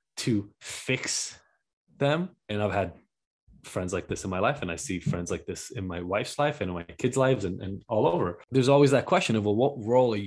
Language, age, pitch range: English, 20-39, 105-130 Hz